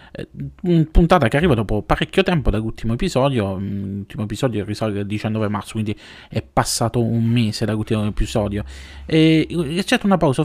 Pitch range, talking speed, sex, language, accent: 105-135 Hz, 165 wpm, male, Italian, native